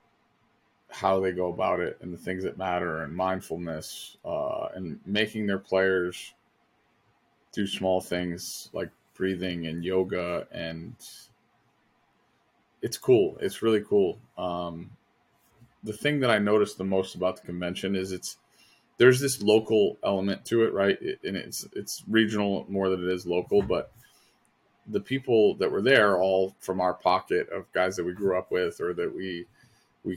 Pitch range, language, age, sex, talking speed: 90-100 Hz, English, 20-39, male, 160 wpm